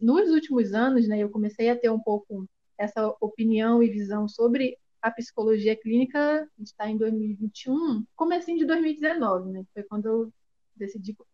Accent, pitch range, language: Brazilian, 215-250 Hz, Portuguese